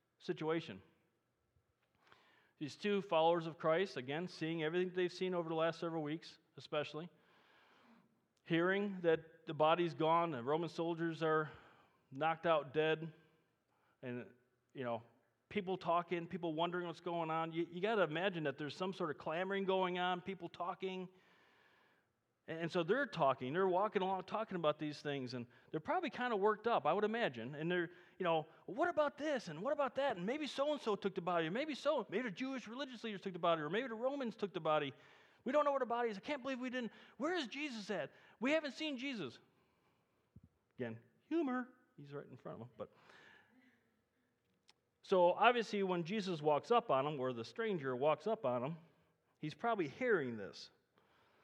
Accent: American